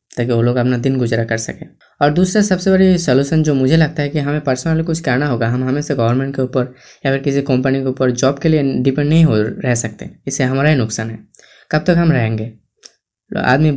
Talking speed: 235 wpm